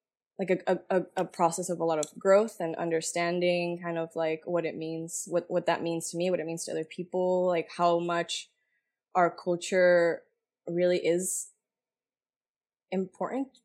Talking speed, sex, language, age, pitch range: 165 wpm, female, English, 20-39, 165-185 Hz